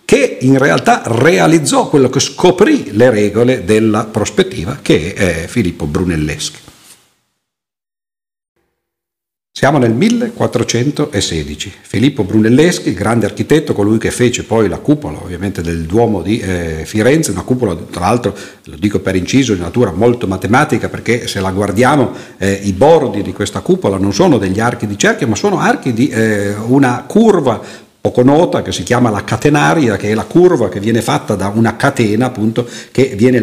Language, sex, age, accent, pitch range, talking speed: Italian, male, 50-69, native, 100-130 Hz, 155 wpm